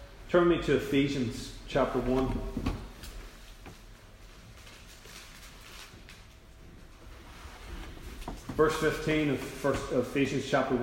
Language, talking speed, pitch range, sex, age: English, 60 wpm, 135-175 Hz, male, 30-49